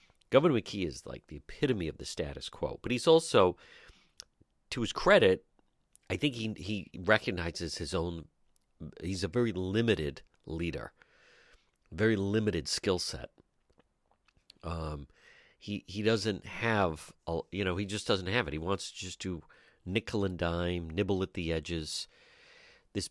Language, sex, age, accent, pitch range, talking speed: English, male, 40-59, American, 80-110 Hz, 150 wpm